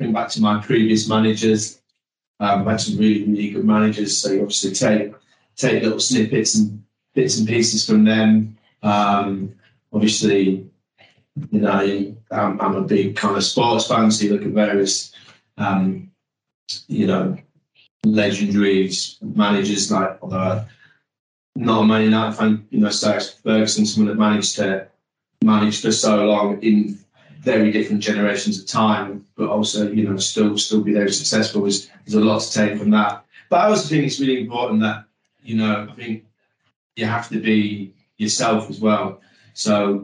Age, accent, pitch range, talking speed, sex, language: 20-39, British, 105-110 Hz, 165 wpm, male, English